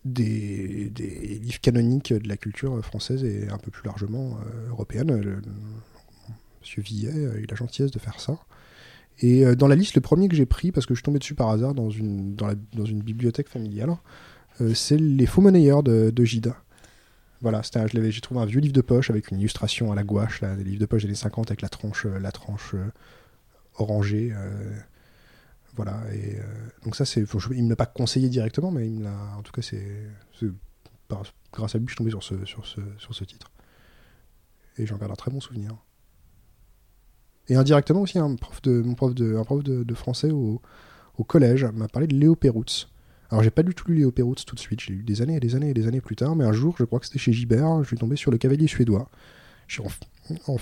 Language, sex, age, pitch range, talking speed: French, male, 20-39, 105-130 Hz, 230 wpm